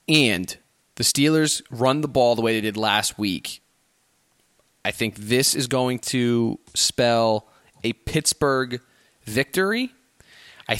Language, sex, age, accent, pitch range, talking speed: English, male, 20-39, American, 110-135 Hz, 130 wpm